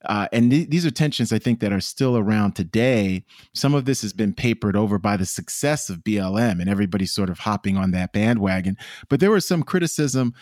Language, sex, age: English, male, 30-49